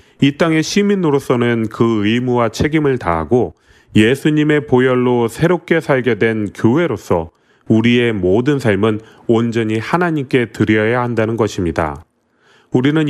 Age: 30-49